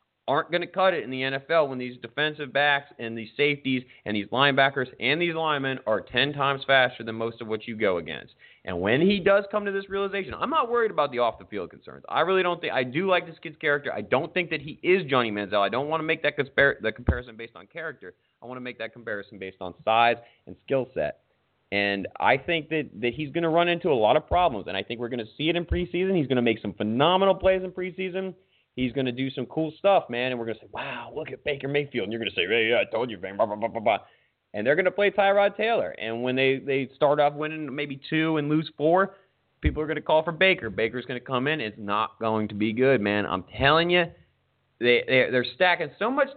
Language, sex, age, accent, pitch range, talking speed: English, male, 30-49, American, 115-165 Hz, 270 wpm